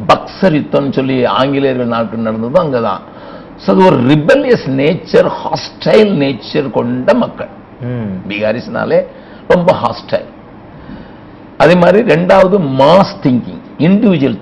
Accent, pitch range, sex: native, 130-190 Hz, male